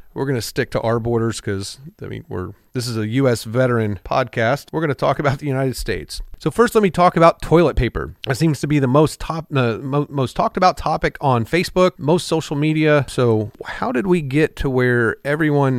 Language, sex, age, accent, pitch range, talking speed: English, male, 40-59, American, 110-145 Hz, 220 wpm